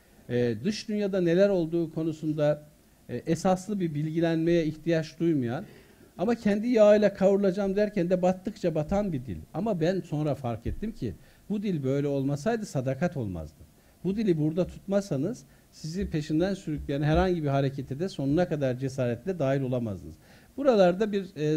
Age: 60-79